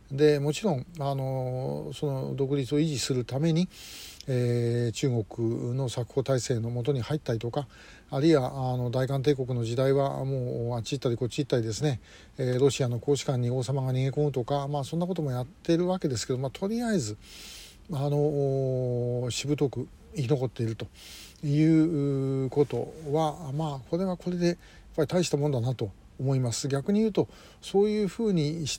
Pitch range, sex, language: 125-155 Hz, male, Japanese